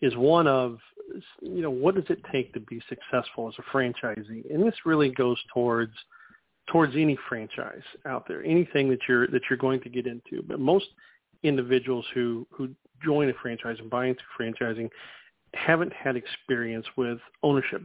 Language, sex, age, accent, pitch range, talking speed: English, male, 40-59, American, 120-140 Hz, 170 wpm